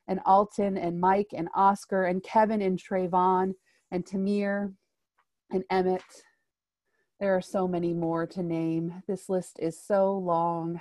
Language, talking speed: English, 145 wpm